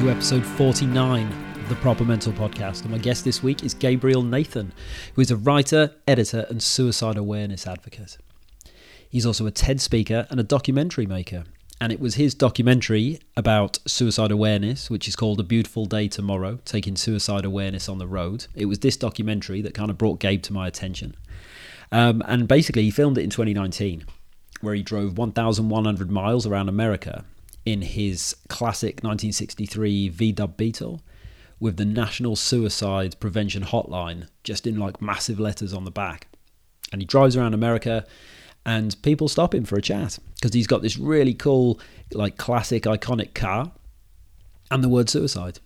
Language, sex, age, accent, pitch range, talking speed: English, male, 30-49, British, 100-125 Hz, 165 wpm